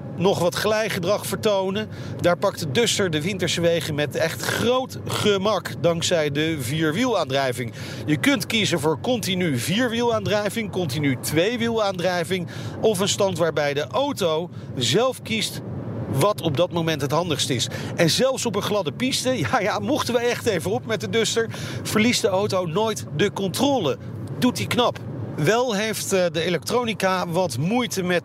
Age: 40-59